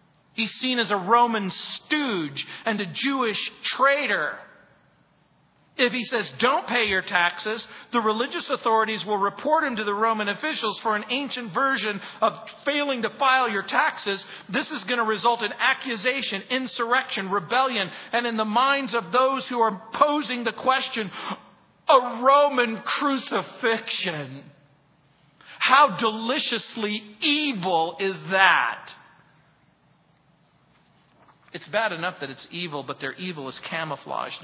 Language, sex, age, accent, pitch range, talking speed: English, male, 50-69, American, 180-250 Hz, 130 wpm